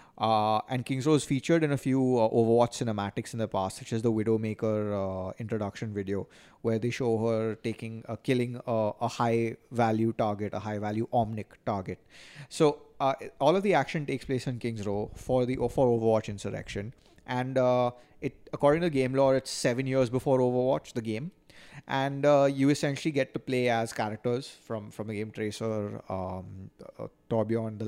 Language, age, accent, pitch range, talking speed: English, 30-49, Indian, 110-135 Hz, 185 wpm